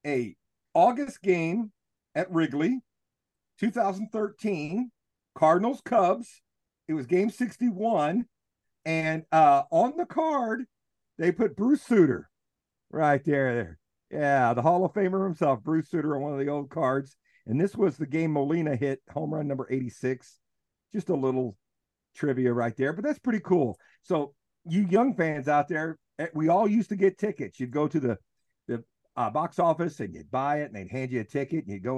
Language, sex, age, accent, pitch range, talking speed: English, male, 50-69, American, 120-175 Hz, 170 wpm